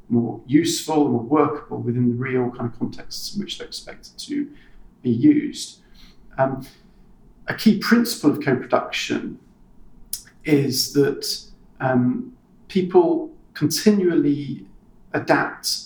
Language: English